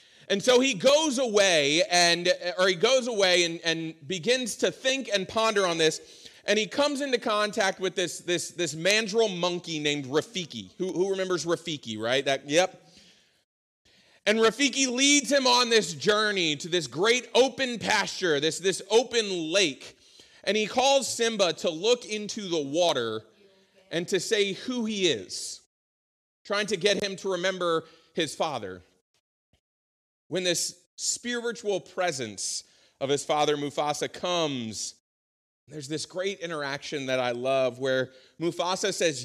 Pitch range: 140-205 Hz